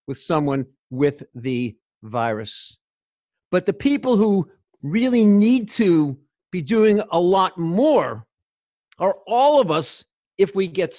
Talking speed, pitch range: 130 wpm, 150-205 Hz